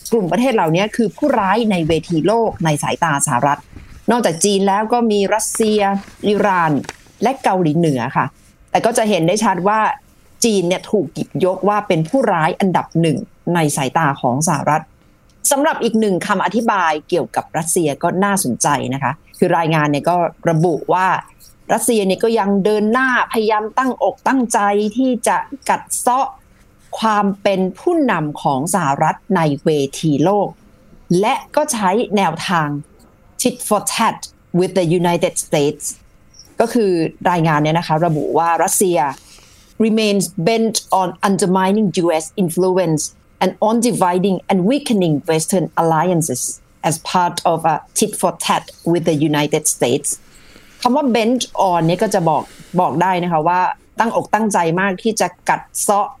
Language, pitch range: Thai, 160-215 Hz